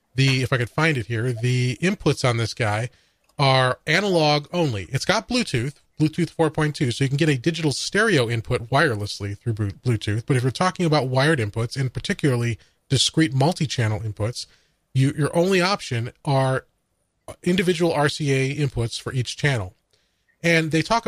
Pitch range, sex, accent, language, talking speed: 125-155 Hz, male, American, English, 160 wpm